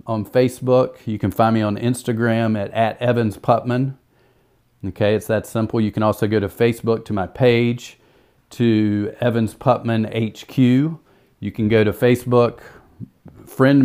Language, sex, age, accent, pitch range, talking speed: English, male, 40-59, American, 110-125 Hz, 150 wpm